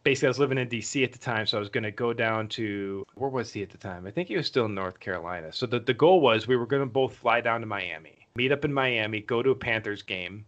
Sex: male